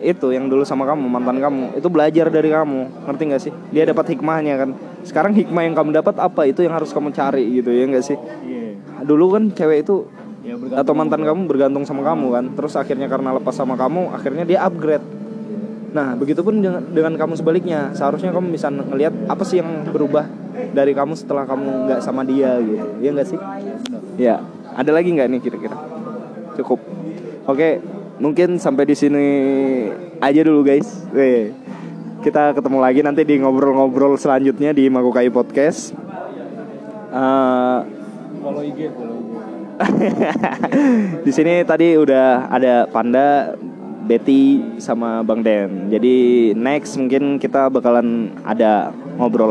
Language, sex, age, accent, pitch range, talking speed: Indonesian, male, 20-39, native, 125-160 Hz, 150 wpm